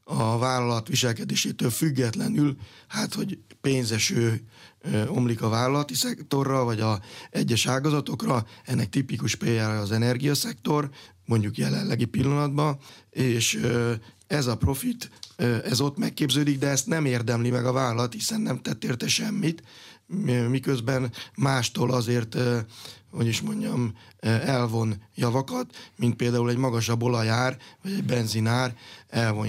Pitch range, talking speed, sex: 115-135 Hz, 120 wpm, male